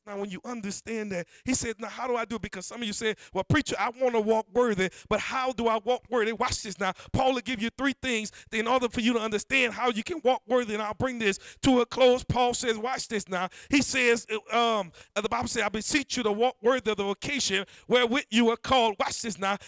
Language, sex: English, male